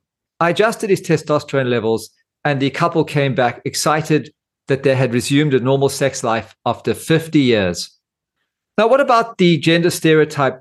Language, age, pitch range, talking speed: English, 40-59, 130-170 Hz, 160 wpm